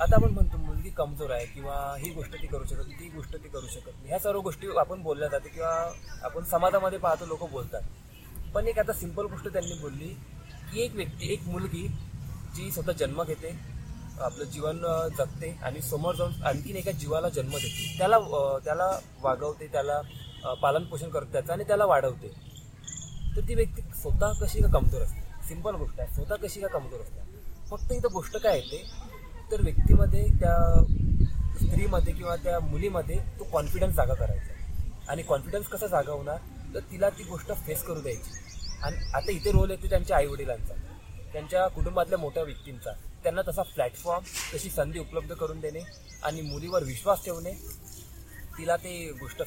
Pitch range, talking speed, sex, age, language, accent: 125-170 Hz, 165 wpm, male, 20-39, Marathi, native